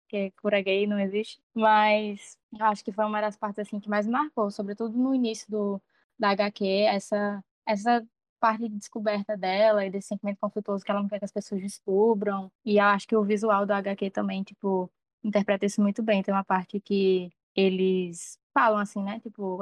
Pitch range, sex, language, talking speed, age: 195-215 Hz, female, Portuguese, 195 wpm, 10-29